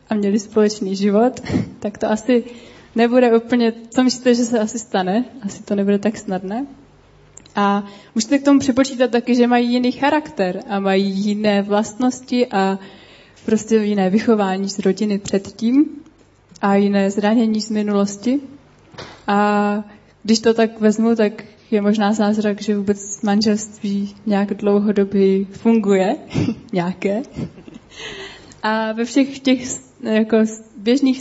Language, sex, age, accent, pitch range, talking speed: Czech, female, 20-39, native, 205-240 Hz, 130 wpm